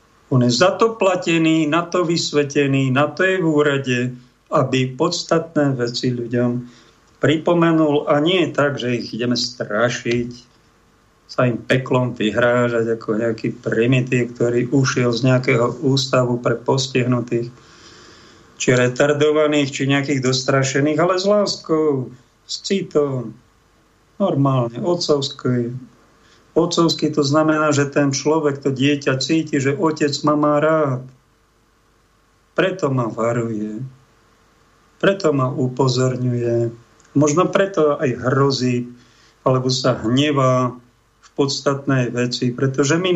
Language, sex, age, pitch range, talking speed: Slovak, male, 50-69, 120-155 Hz, 115 wpm